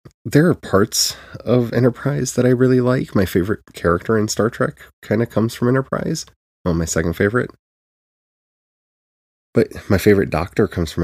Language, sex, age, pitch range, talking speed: English, male, 20-39, 90-120 Hz, 165 wpm